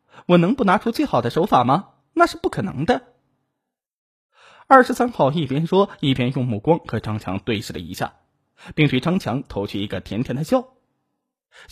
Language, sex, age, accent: Chinese, male, 20-39, native